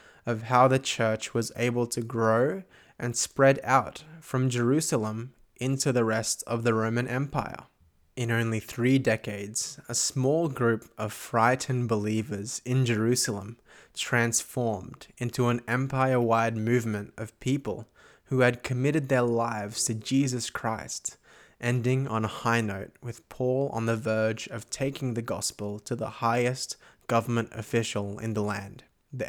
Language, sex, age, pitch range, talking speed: English, male, 20-39, 110-125 Hz, 145 wpm